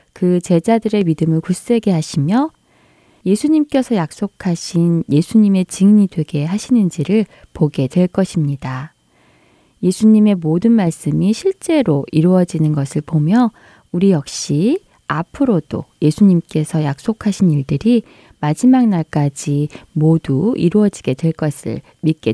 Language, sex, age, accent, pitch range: Korean, female, 20-39, native, 155-225 Hz